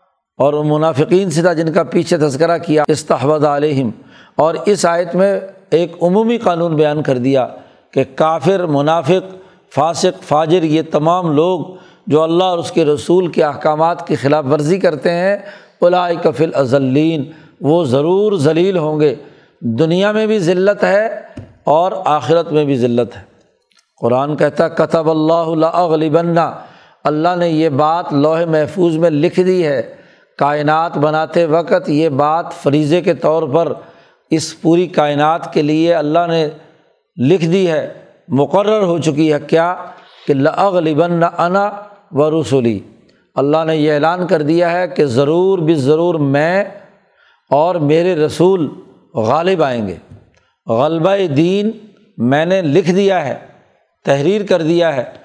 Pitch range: 150-180 Hz